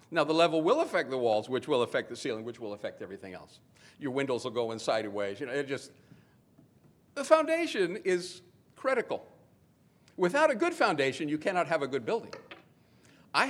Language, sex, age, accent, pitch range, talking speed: English, male, 50-69, American, 130-195 Hz, 180 wpm